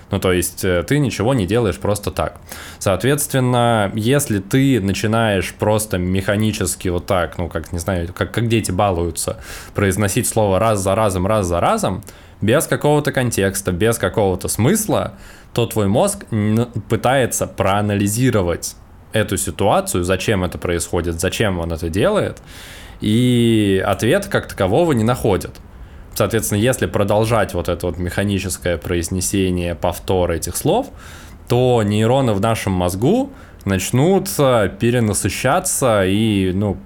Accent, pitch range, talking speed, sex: native, 90-115 Hz, 130 wpm, male